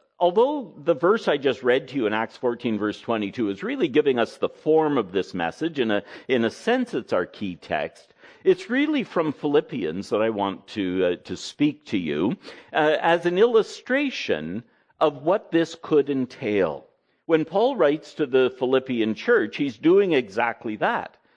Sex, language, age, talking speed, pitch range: male, English, 60-79, 185 wpm, 105-160 Hz